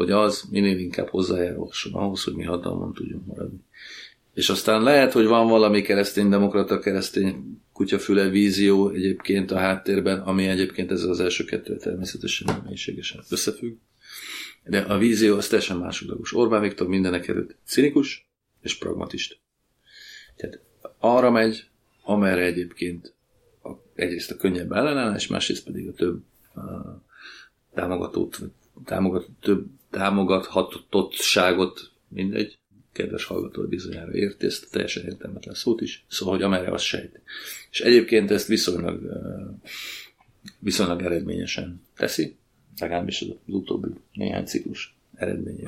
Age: 30-49